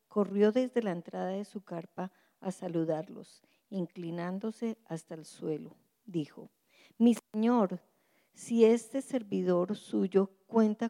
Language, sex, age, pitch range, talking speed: English, female, 50-69, 175-225 Hz, 115 wpm